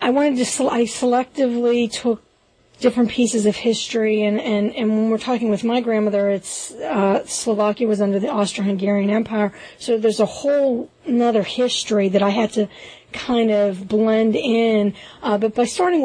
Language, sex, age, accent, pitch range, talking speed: English, female, 40-59, American, 205-235 Hz, 170 wpm